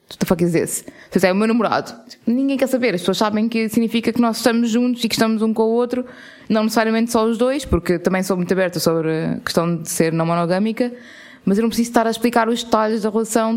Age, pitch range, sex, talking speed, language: 20-39, 180-225 Hz, female, 250 wpm, Portuguese